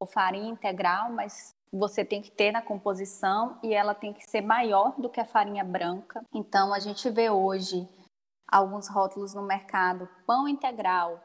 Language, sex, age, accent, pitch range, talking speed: Portuguese, female, 10-29, Brazilian, 195-235 Hz, 165 wpm